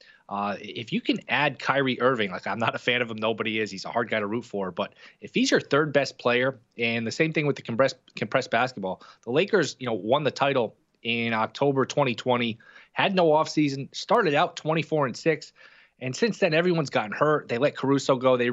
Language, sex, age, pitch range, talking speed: English, male, 20-39, 110-135 Hz, 220 wpm